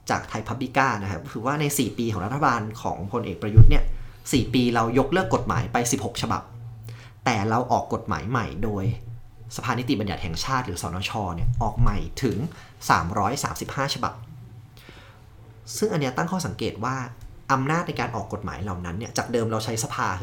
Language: Thai